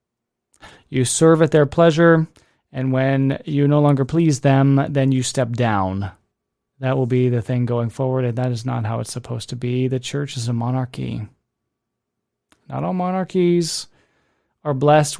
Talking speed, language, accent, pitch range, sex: 165 wpm, English, American, 105-140 Hz, male